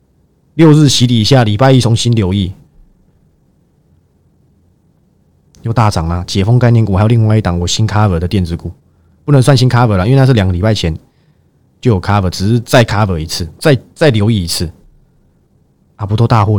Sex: male